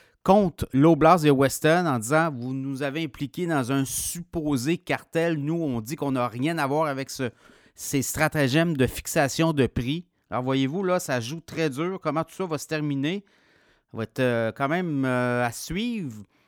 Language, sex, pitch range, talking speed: French, male, 135-175 Hz, 195 wpm